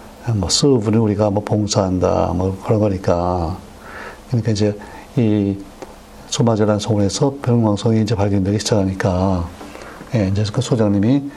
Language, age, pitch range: Korean, 60-79, 100-120 Hz